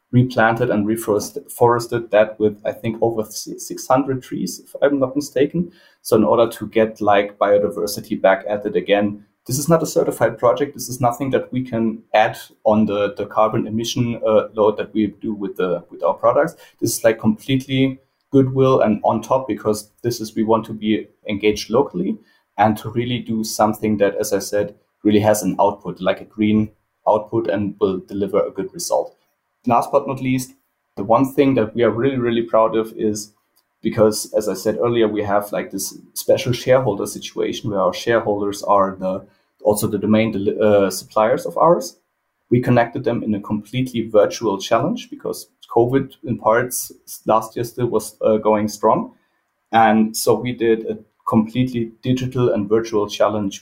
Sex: male